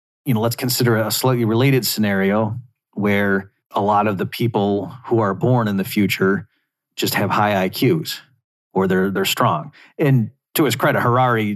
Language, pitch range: English, 100-120 Hz